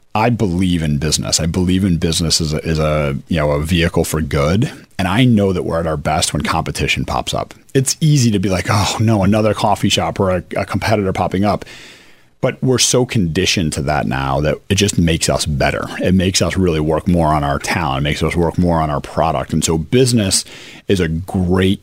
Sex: male